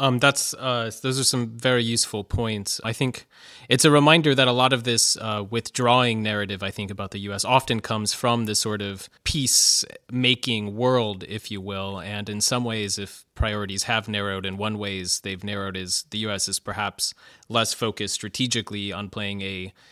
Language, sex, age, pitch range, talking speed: English, male, 30-49, 105-130 Hz, 190 wpm